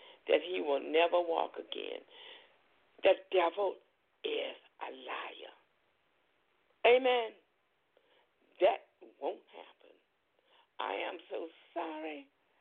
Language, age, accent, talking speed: English, 60-79, American, 90 wpm